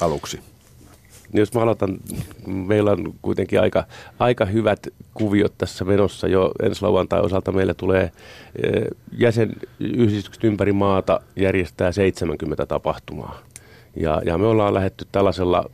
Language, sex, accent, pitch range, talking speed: Finnish, male, native, 85-105 Hz, 120 wpm